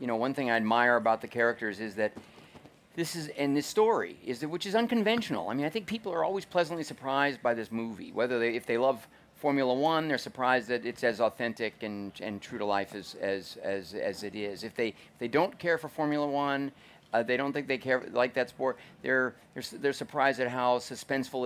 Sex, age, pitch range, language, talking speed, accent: male, 50-69, 115-150 Hz, English, 230 wpm, American